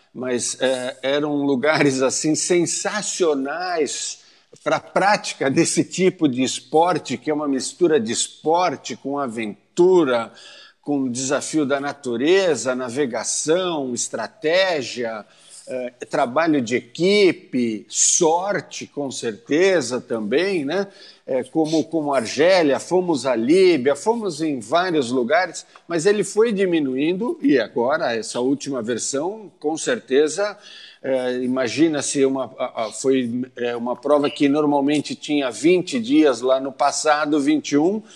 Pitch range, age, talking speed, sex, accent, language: 135-190 Hz, 50-69, 115 wpm, male, Brazilian, Portuguese